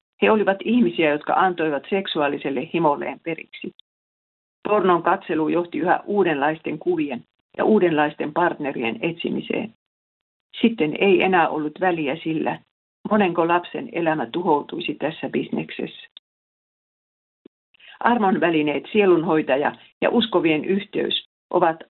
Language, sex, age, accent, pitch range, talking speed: Finnish, female, 50-69, native, 155-200 Hz, 100 wpm